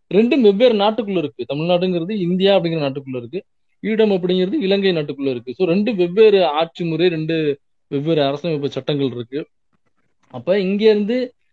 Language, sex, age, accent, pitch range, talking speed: Tamil, male, 20-39, native, 145-195 Hz, 135 wpm